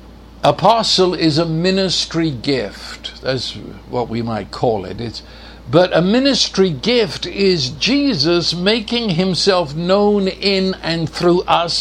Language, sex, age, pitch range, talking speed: English, male, 60-79, 135-185 Hz, 120 wpm